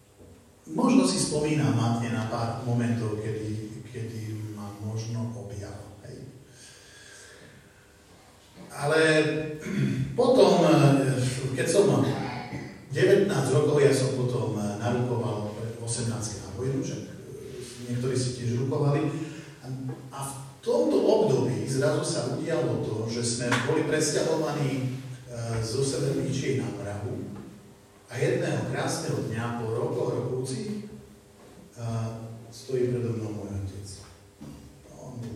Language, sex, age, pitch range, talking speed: Slovak, male, 40-59, 115-140 Hz, 100 wpm